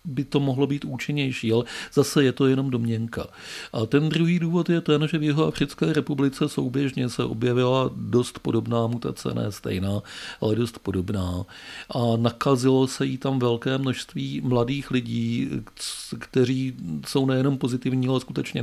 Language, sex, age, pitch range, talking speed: Czech, male, 40-59, 110-130 Hz, 155 wpm